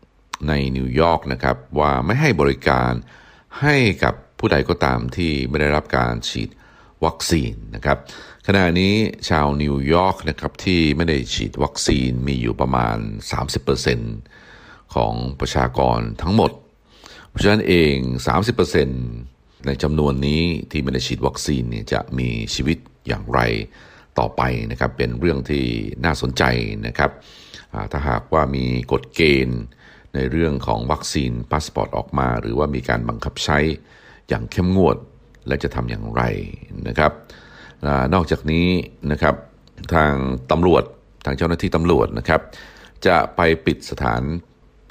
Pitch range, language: 65-80 Hz, Thai